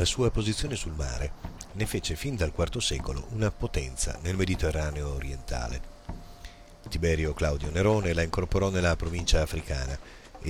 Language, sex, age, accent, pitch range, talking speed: Italian, male, 40-59, native, 80-95 Hz, 145 wpm